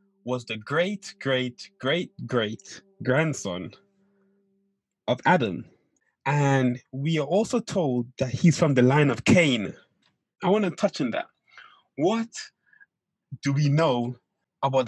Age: 20-39